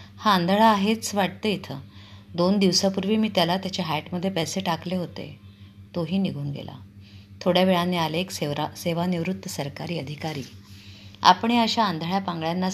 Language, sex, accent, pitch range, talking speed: Marathi, female, native, 140-185 Hz, 130 wpm